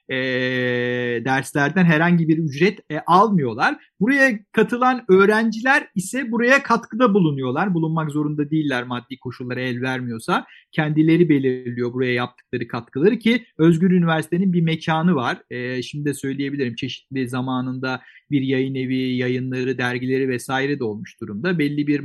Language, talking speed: Turkish, 135 wpm